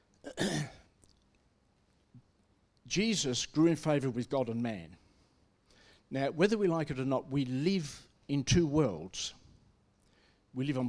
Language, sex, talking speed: English, male, 125 wpm